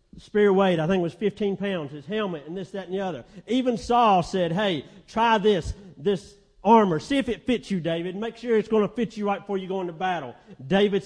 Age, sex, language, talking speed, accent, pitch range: 50-69, male, English, 240 wpm, American, 170-220 Hz